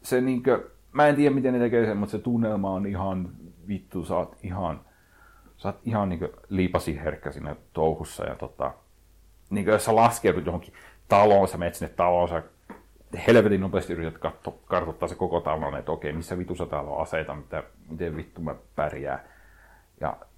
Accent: native